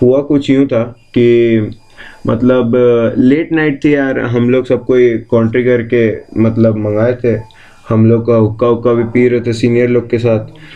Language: English